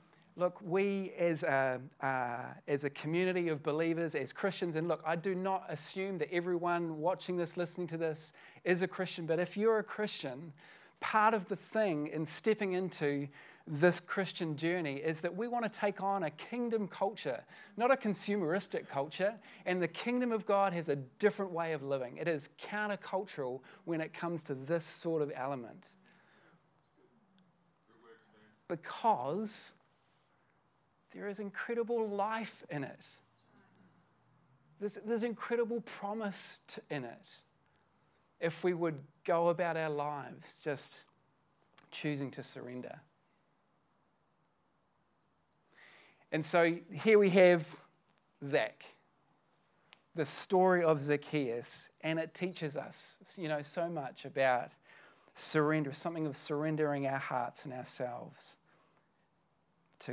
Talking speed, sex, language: 130 wpm, male, English